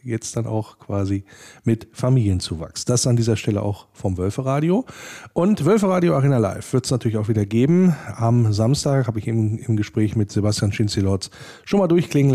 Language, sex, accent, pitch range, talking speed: German, male, German, 105-135 Hz, 180 wpm